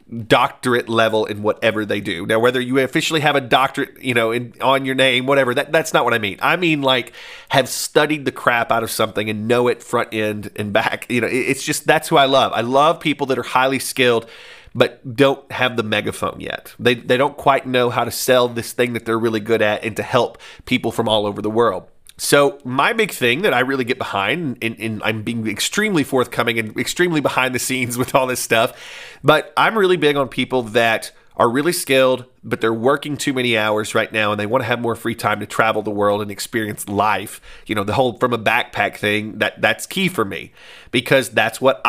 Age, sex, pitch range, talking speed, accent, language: 30-49, male, 110-140 Hz, 225 wpm, American, English